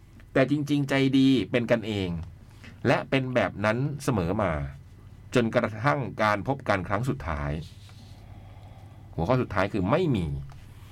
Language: Thai